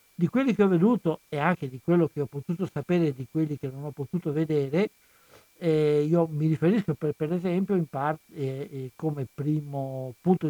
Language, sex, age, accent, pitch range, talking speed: Italian, male, 60-79, native, 140-175 Hz, 195 wpm